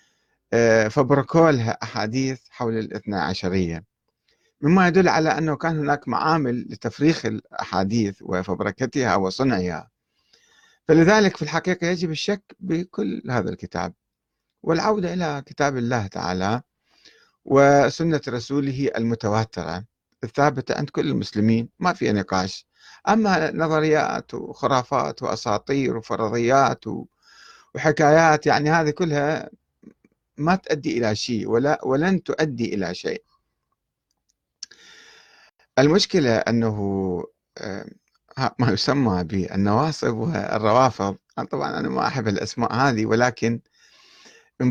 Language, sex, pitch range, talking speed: Arabic, male, 110-160 Hz, 95 wpm